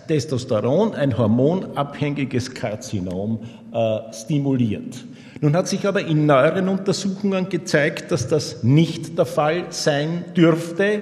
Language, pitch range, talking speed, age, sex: German, 125-175 Hz, 115 wpm, 50-69, male